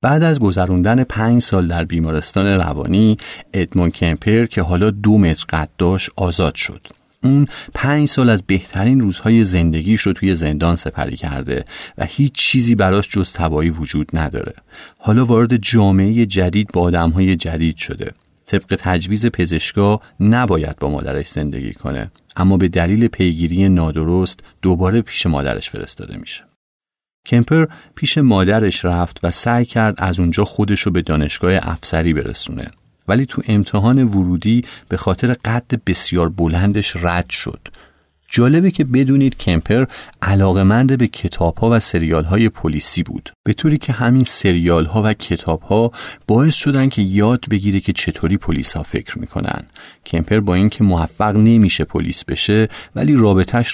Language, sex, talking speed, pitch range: Persian, male, 145 wpm, 85-115 Hz